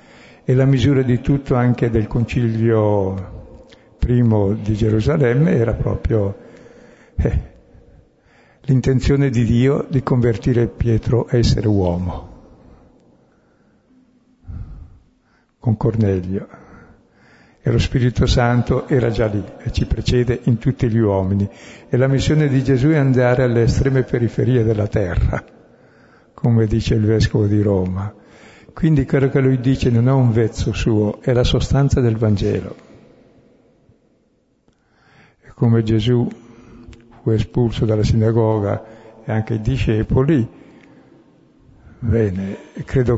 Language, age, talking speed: Italian, 60-79, 120 wpm